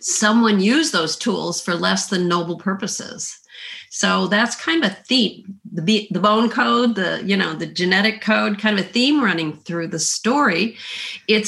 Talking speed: 165 wpm